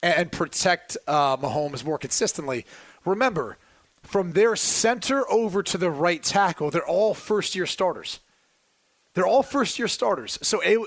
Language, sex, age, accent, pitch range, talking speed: English, male, 30-49, American, 160-205 Hz, 140 wpm